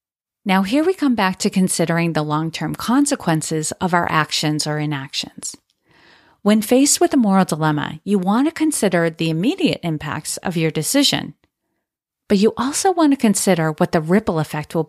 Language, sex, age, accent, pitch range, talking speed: English, female, 40-59, American, 165-225 Hz, 170 wpm